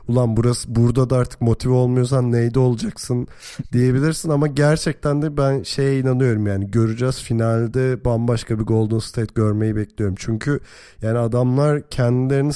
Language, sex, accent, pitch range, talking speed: Turkish, male, native, 110-135 Hz, 140 wpm